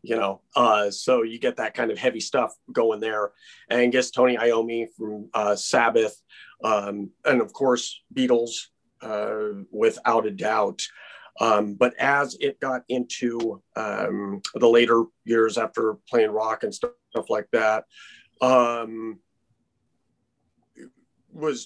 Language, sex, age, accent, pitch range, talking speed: English, male, 40-59, American, 115-135 Hz, 135 wpm